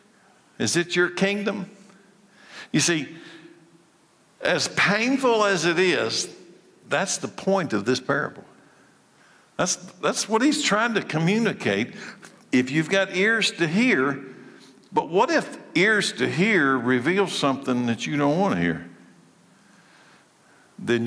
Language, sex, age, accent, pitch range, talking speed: English, male, 60-79, American, 120-175 Hz, 130 wpm